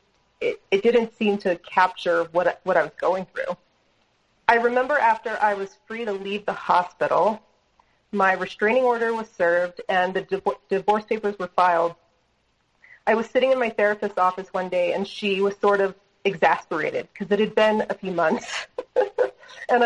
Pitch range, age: 190-245 Hz, 30-49